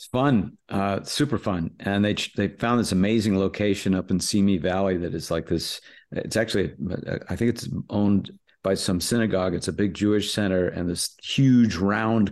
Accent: American